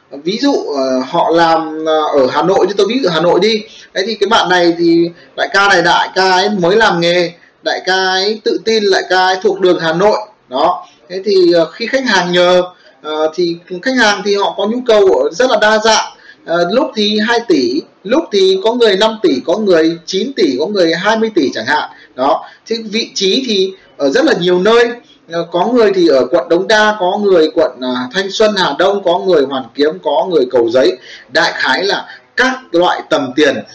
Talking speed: 210 wpm